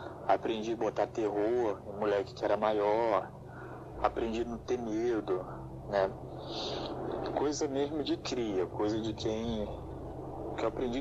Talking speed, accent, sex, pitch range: 145 wpm, Brazilian, male, 105-125 Hz